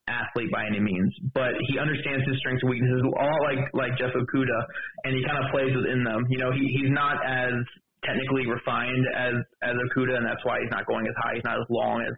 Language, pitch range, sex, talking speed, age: English, 120-135 Hz, male, 230 wpm, 20-39